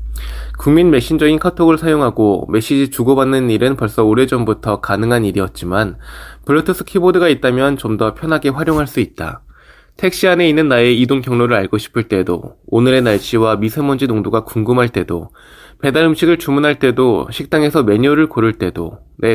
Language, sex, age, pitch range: Korean, male, 20-39, 110-150 Hz